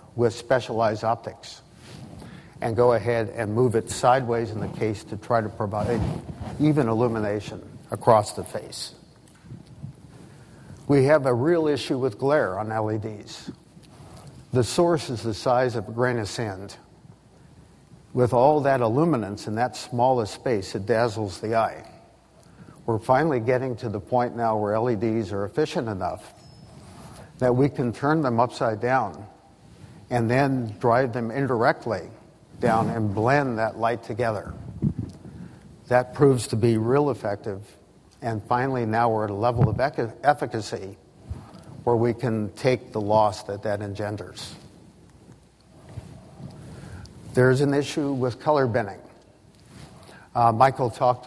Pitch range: 110-130 Hz